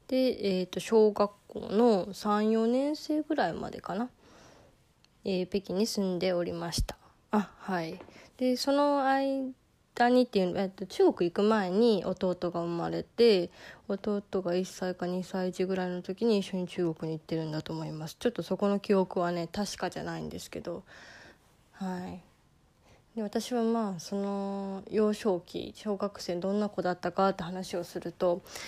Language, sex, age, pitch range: Japanese, female, 20-39, 185-225 Hz